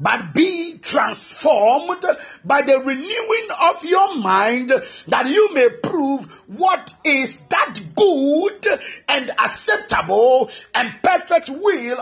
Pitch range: 250-340 Hz